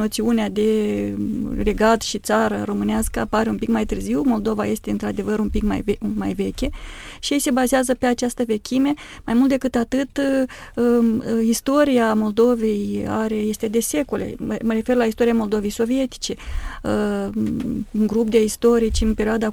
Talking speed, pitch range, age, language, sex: 145 wpm, 215-240 Hz, 30-49, Romanian, female